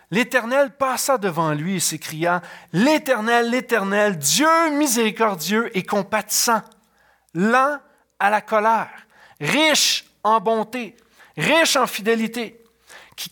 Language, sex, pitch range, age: French, male, 175-240 Hz, 40-59